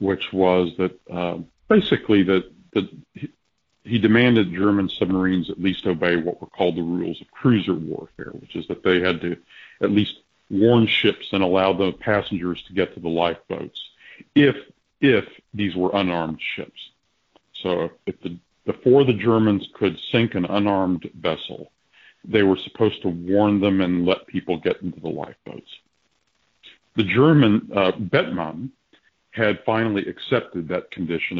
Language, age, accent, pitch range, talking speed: English, 50-69, American, 90-110 Hz, 155 wpm